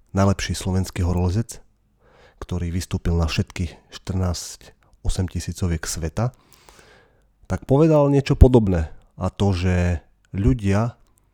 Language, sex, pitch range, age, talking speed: Slovak, male, 85-105 Hz, 30-49, 95 wpm